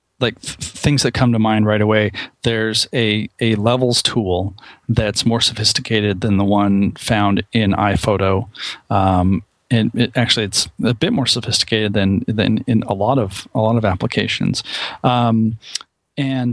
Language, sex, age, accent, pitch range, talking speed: English, male, 40-59, American, 105-125 Hz, 160 wpm